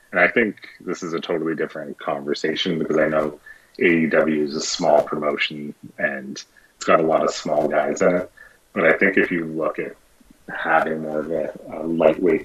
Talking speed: 185 wpm